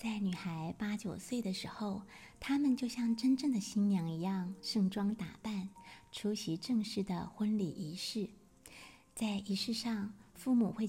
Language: Chinese